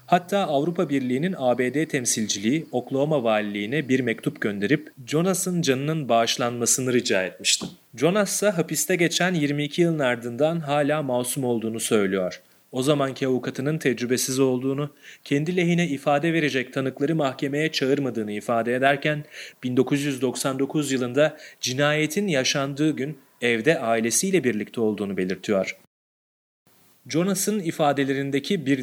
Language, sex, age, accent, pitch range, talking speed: Turkish, male, 30-49, native, 125-160 Hz, 110 wpm